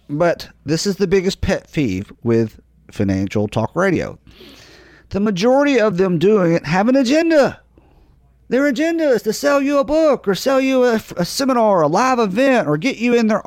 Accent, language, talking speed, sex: American, English, 190 wpm, male